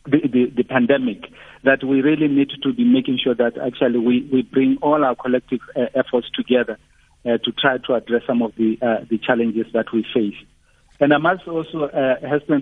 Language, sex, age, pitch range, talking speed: English, male, 50-69, 120-145 Hz, 200 wpm